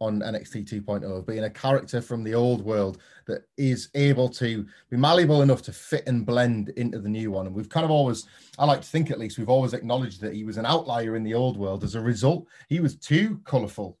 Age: 30-49